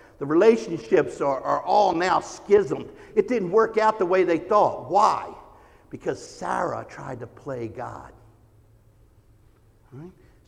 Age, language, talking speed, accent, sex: 50-69, English, 130 wpm, American, male